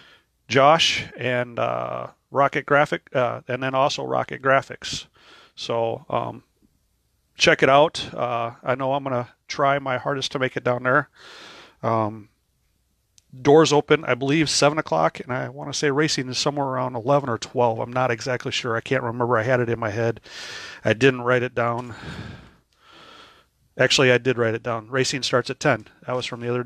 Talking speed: 180 wpm